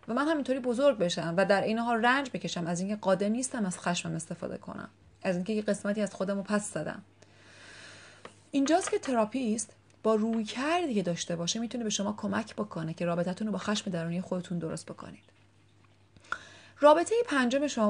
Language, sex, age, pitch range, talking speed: Persian, female, 30-49, 175-225 Hz, 170 wpm